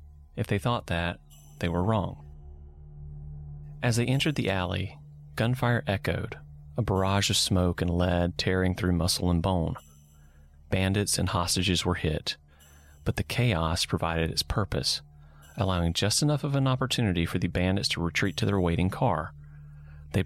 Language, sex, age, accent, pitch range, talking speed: English, male, 30-49, American, 75-100 Hz, 155 wpm